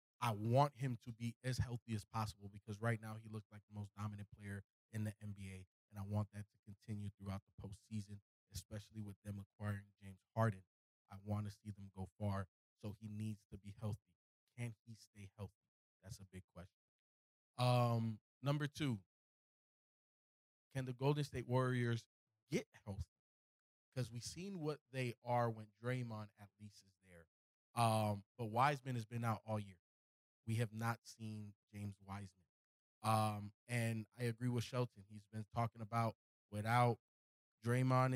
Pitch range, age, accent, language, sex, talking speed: 100-120 Hz, 20-39, American, English, male, 165 wpm